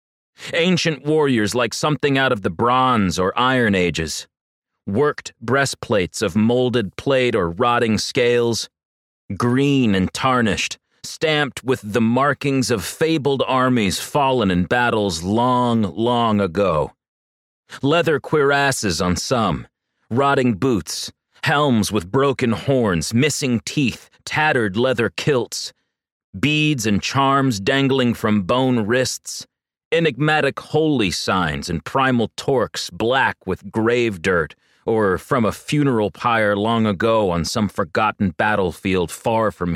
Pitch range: 100-130 Hz